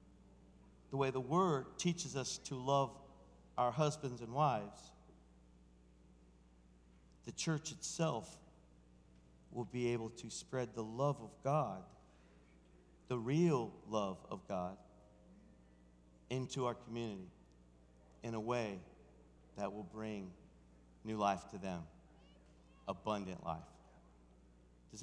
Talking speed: 105 wpm